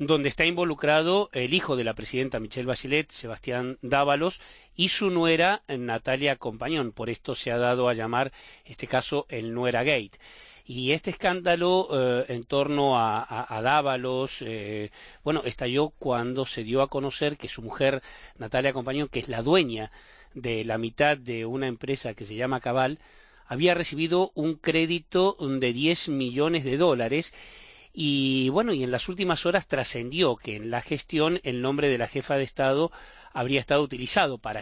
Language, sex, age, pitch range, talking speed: Spanish, male, 40-59, 125-160 Hz, 170 wpm